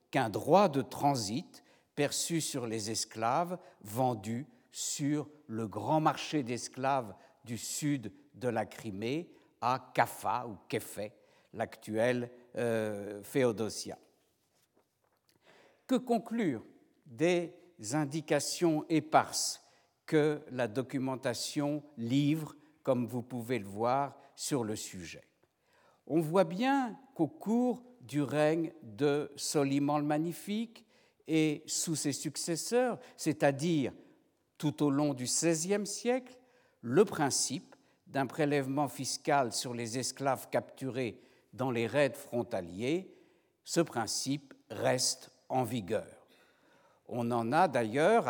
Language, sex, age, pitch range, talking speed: French, male, 60-79, 120-170 Hz, 110 wpm